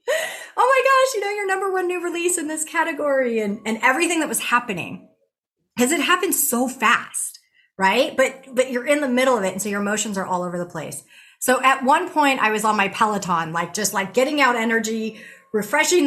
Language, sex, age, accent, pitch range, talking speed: English, female, 30-49, American, 185-260 Hz, 215 wpm